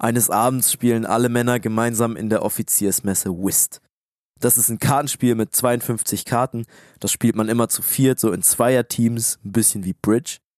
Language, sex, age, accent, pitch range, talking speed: German, male, 20-39, German, 105-125 Hz, 170 wpm